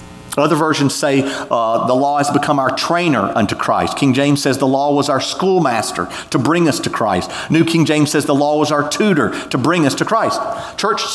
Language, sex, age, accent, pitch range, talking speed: English, male, 40-59, American, 105-160 Hz, 215 wpm